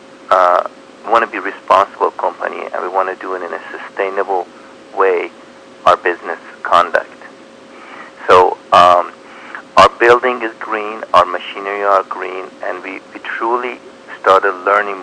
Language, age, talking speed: English, 50-69, 150 wpm